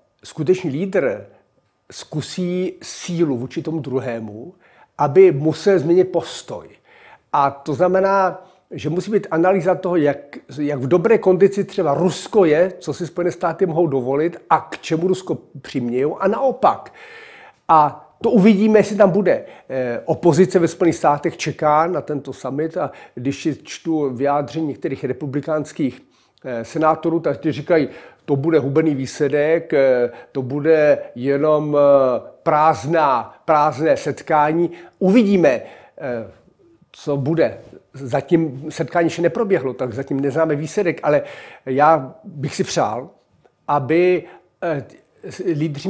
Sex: male